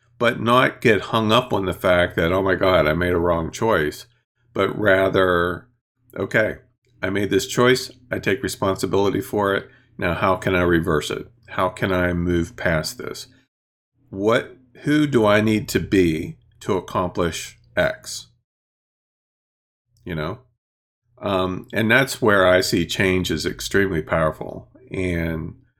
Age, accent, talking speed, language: 40-59, American, 150 wpm, English